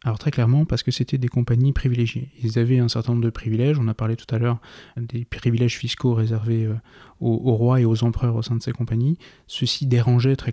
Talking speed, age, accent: 235 wpm, 20-39, French